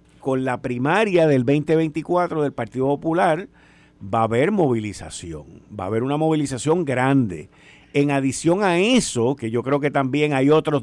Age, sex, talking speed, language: 50-69, male, 160 wpm, Spanish